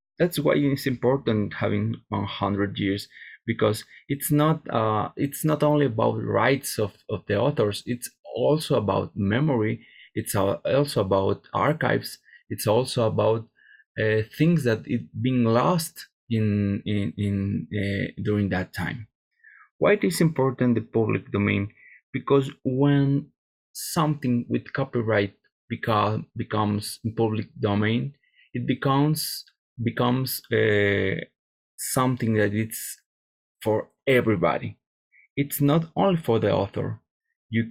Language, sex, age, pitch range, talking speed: English, male, 20-39, 110-140 Hz, 125 wpm